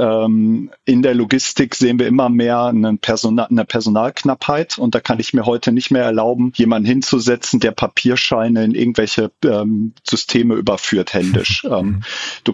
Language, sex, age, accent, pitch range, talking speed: German, male, 40-59, German, 110-125 Hz, 135 wpm